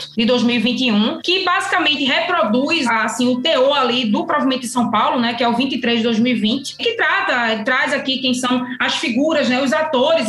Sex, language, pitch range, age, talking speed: female, Portuguese, 240-290 Hz, 20-39, 185 wpm